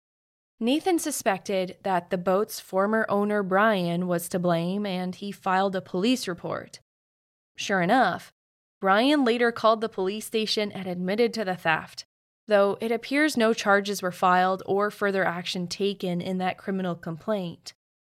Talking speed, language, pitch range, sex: 150 wpm, English, 180-225 Hz, female